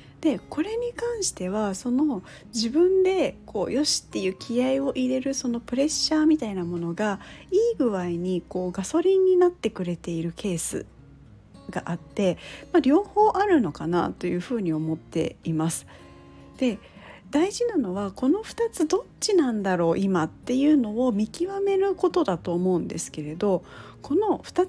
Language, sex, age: Japanese, female, 40-59